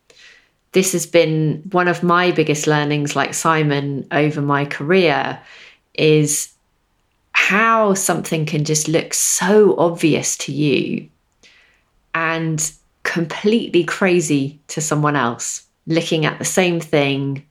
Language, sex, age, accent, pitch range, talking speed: English, female, 30-49, British, 145-170 Hz, 115 wpm